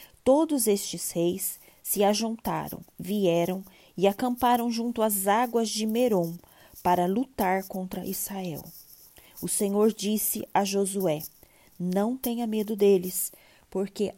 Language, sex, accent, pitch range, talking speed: Portuguese, female, Brazilian, 180-215 Hz, 115 wpm